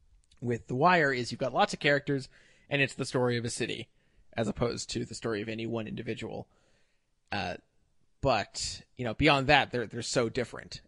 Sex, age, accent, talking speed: male, 30-49, American, 195 wpm